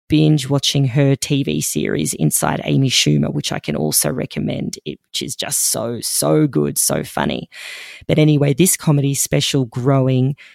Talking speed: 155 wpm